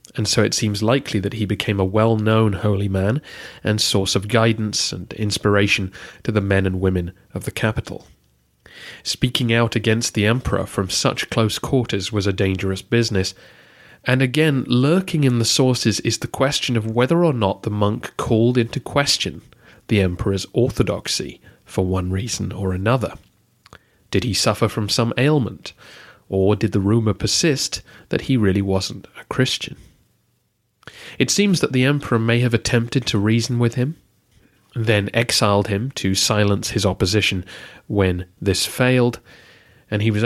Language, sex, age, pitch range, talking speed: English, male, 30-49, 100-120 Hz, 160 wpm